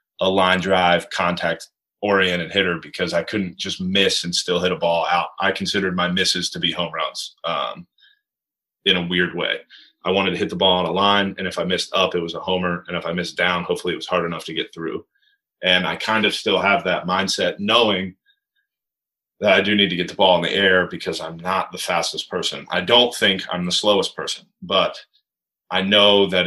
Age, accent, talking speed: 30-49, American, 220 wpm